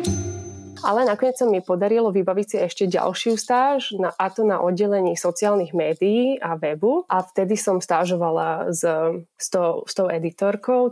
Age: 20-39